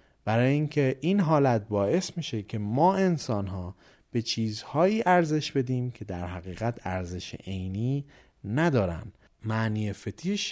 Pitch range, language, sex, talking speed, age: 95-145 Hz, Persian, male, 125 wpm, 30-49